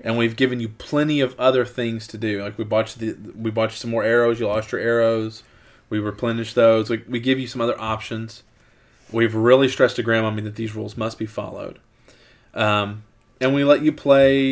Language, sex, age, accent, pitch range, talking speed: English, male, 20-39, American, 110-135 Hz, 205 wpm